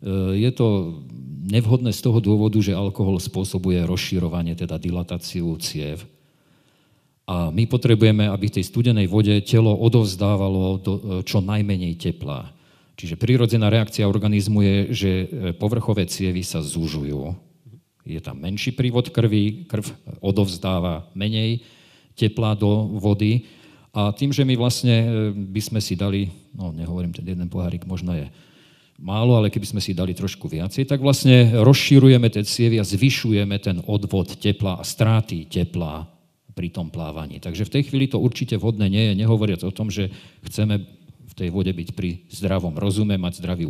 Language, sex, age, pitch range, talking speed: Slovak, male, 40-59, 90-115 Hz, 150 wpm